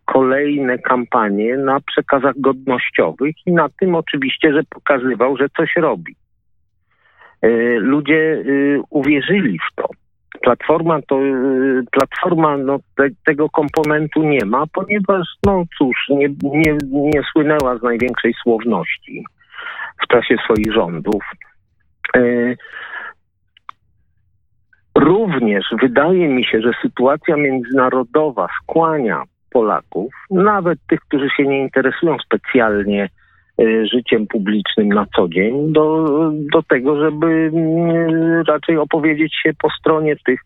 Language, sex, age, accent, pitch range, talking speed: Polish, male, 50-69, native, 130-155 Hz, 100 wpm